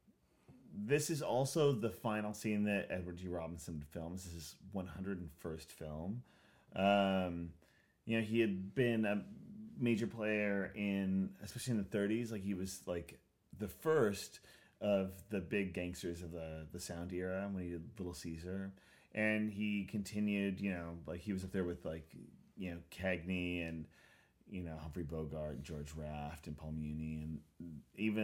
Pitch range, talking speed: 80-100 Hz, 165 wpm